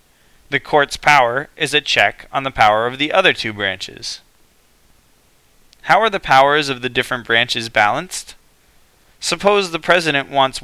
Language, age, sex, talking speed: English, 20-39, male, 150 wpm